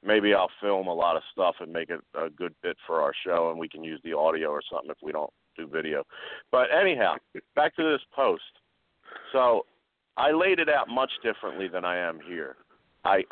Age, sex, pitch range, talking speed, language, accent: 40-59, male, 85-105 Hz, 210 wpm, English, American